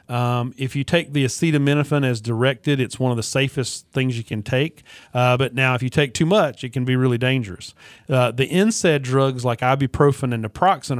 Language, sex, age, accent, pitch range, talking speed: English, male, 40-59, American, 120-140 Hz, 205 wpm